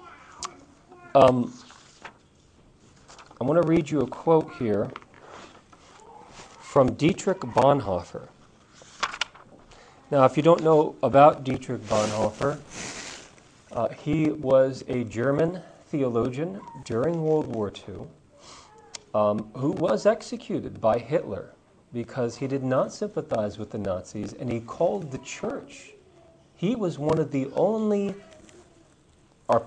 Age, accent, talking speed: 40-59, American, 115 wpm